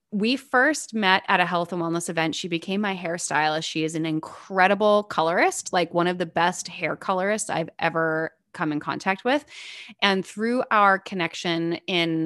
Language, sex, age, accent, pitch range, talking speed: English, female, 20-39, American, 160-195 Hz, 175 wpm